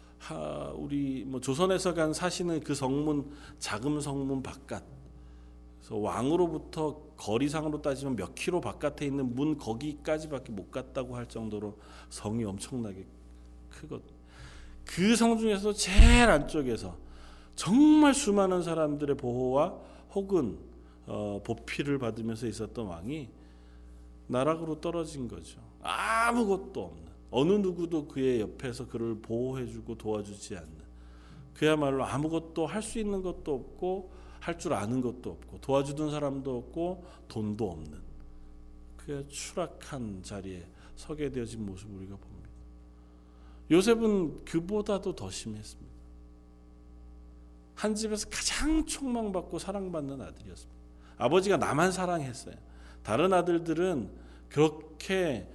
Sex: male